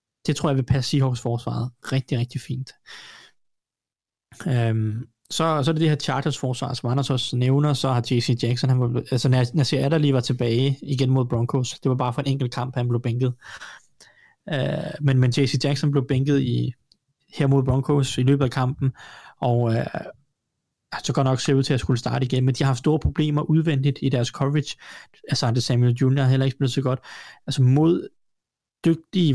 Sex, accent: male, native